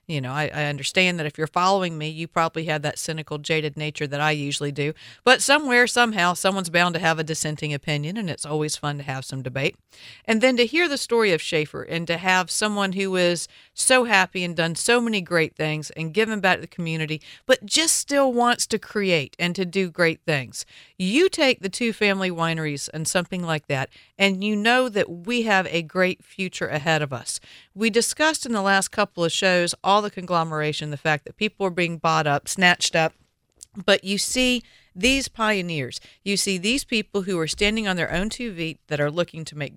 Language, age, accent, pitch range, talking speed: English, 50-69, American, 160-215 Hz, 215 wpm